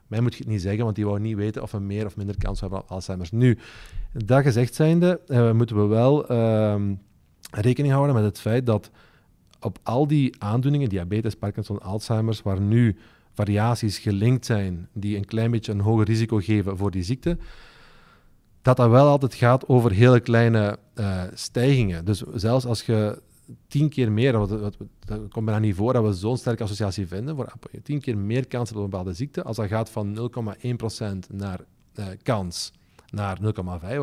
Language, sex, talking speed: Dutch, male, 185 wpm